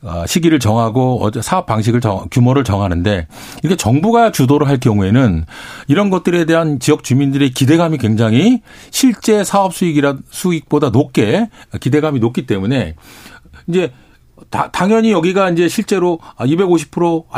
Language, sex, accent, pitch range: Korean, male, native, 125-185 Hz